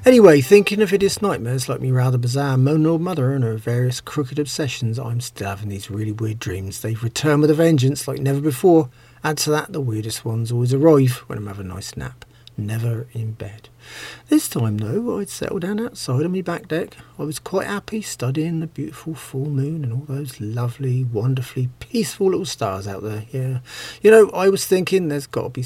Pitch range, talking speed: 120-155 Hz, 210 wpm